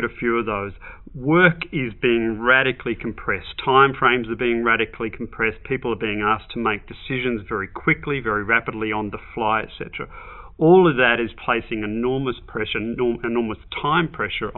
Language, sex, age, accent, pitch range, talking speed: English, male, 40-59, Australian, 105-130 Hz, 165 wpm